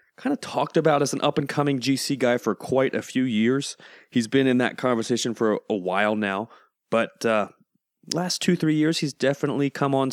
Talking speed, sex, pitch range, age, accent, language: 200 wpm, male, 110-150 Hz, 30-49, American, English